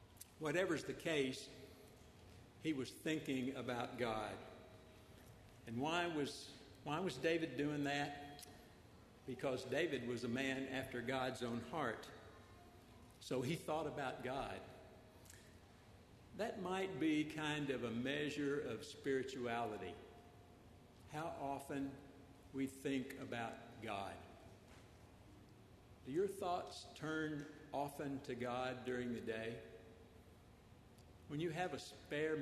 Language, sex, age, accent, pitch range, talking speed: English, male, 60-79, American, 115-145 Hz, 110 wpm